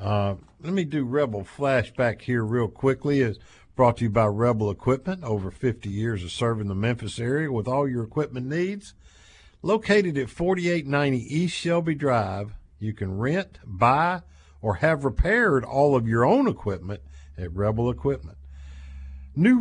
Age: 50-69